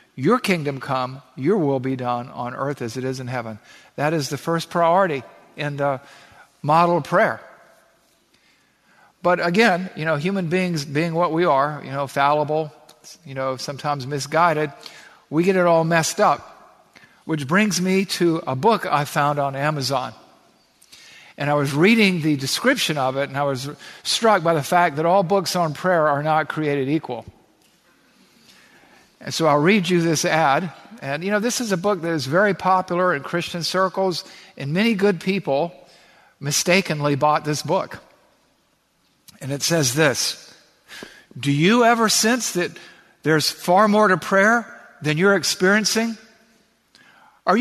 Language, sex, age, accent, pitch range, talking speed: English, male, 50-69, American, 145-190 Hz, 160 wpm